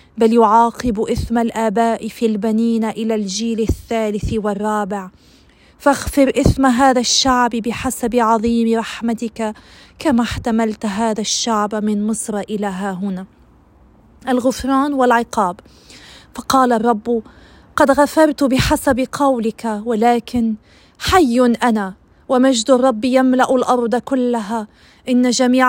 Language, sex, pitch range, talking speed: Arabic, female, 220-250 Hz, 105 wpm